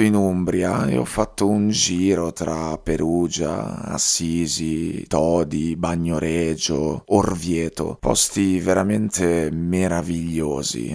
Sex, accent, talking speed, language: male, native, 90 wpm, Italian